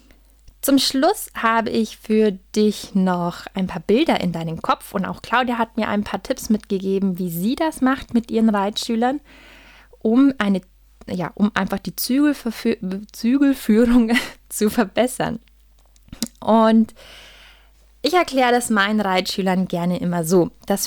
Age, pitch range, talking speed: 20-39, 195-255 Hz, 140 wpm